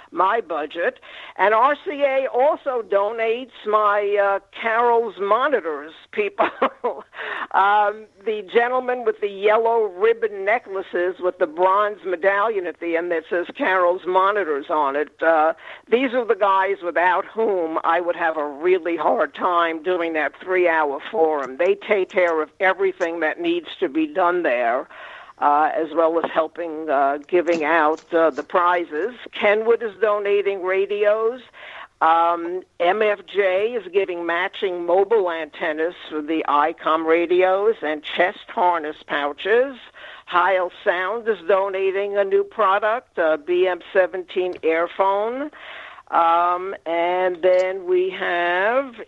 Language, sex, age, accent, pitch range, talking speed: English, female, 60-79, American, 170-225 Hz, 130 wpm